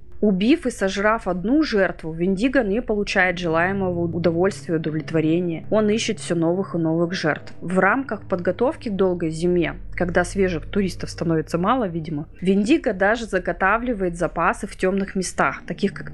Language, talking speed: Russian, 145 wpm